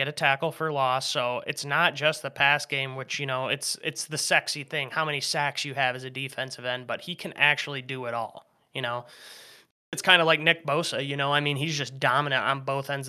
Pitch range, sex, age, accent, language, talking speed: 130-150 Hz, male, 20-39, American, English, 245 wpm